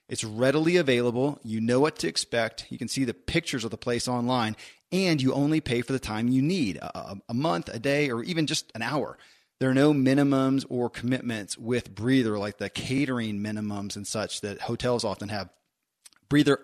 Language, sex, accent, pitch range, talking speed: English, male, American, 115-140 Hz, 200 wpm